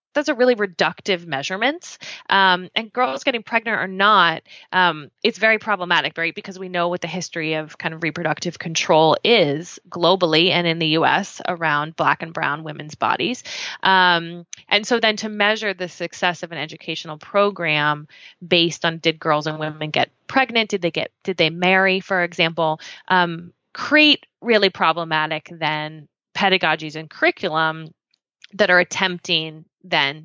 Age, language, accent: 20-39, English, American